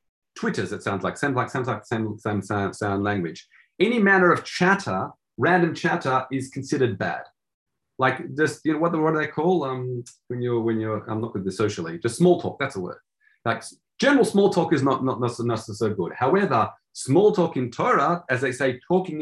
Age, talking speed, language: 40-59, 210 wpm, English